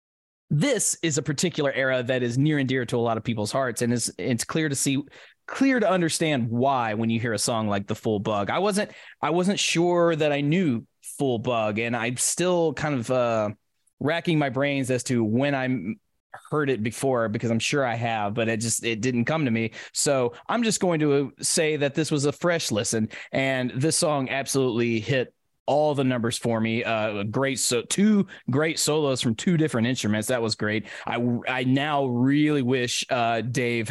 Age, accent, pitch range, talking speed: 20-39, American, 115-150 Hz, 205 wpm